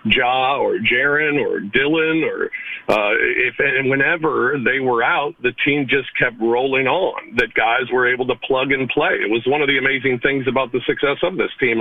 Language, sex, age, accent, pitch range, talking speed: English, male, 50-69, American, 125-185 Hz, 205 wpm